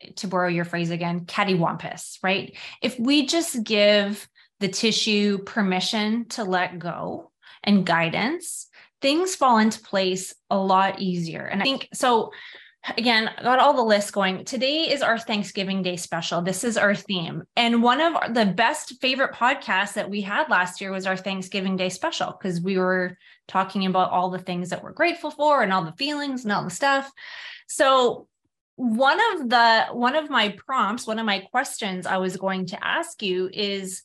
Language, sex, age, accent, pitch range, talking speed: English, female, 20-39, American, 190-250 Hz, 185 wpm